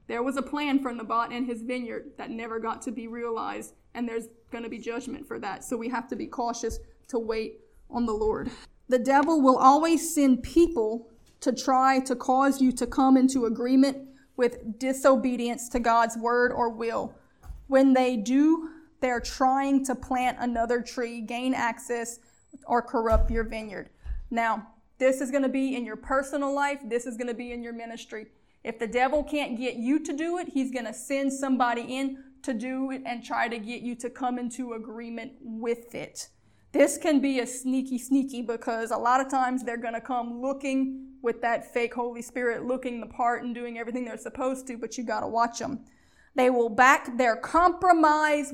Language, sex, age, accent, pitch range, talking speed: English, female, 20-39, American, 235-265 Hz, 195 wpm